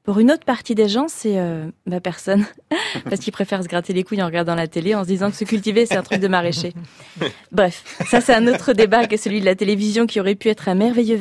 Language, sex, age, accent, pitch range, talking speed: French, female, 30-49, French, 195-245 Hz, 260 wpm